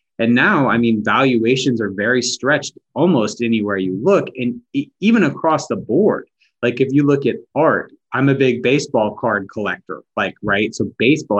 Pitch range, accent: 115-140 Hz, American